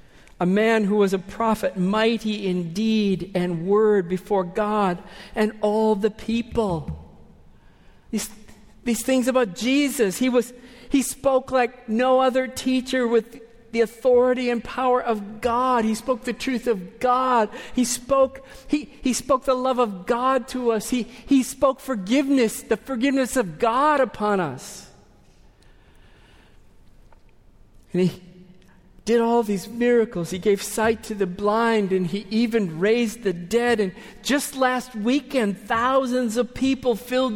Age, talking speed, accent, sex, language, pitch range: 50-69, 140 wpm, American, male, English, 205-255 Hz